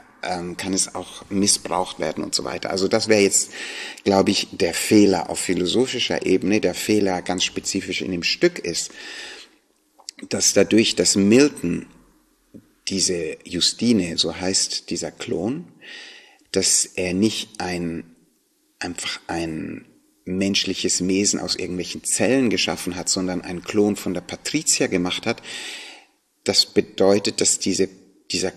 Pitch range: 90-105 Hz